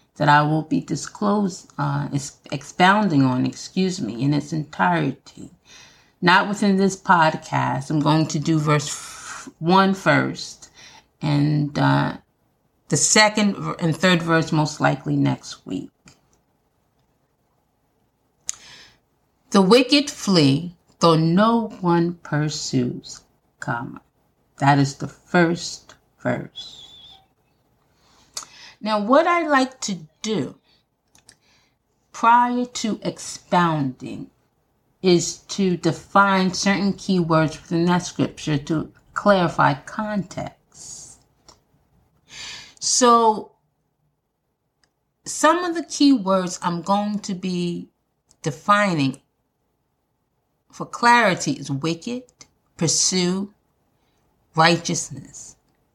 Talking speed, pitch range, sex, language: 90 wpm, 145-200 Hz, female, English